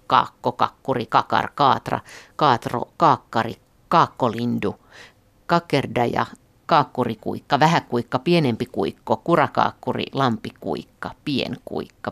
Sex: female